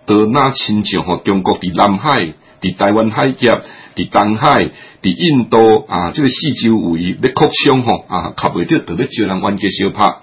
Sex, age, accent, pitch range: male, 60-79, Malaysian, 100-140 Hz